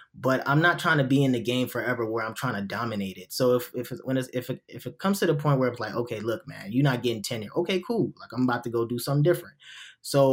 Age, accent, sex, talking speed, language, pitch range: 20-39, American, male, 290 wpm, English, 120-150 Hz